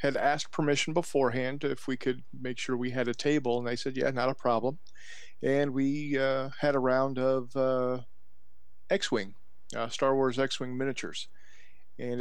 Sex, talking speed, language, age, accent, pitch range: male, 165 wpm, English, 40-59, American, 115-135 Hz